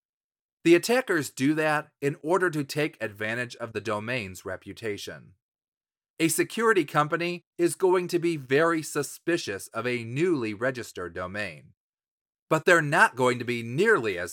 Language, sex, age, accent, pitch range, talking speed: English, male, 30-49, American, 120-160 Hz, 145 wpm